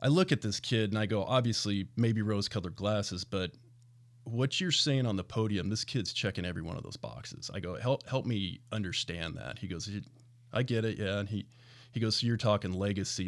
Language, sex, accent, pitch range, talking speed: English, male, American, 100-120 Hz, 215 wpm